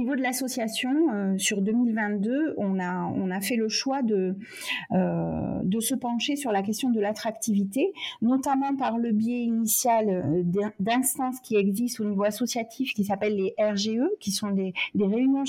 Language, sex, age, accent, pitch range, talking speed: French, female, 40-59, French, 205-260 Hz, 160 wpm